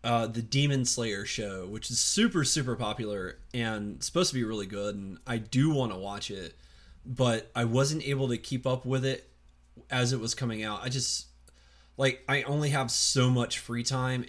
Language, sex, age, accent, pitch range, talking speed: English, male, 20-39, American, 95-130 Hz, 195 wpm